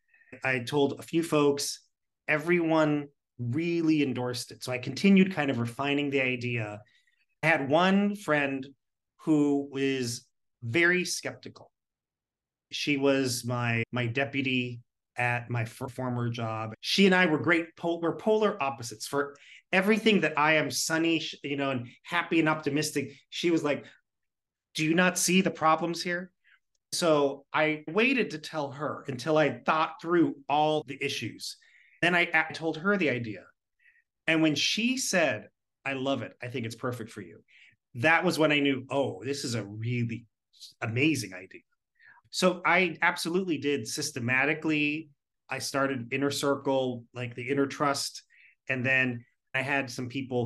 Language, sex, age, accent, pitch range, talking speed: English, male, 30-49, American, 125-160 Hz, 155 wpm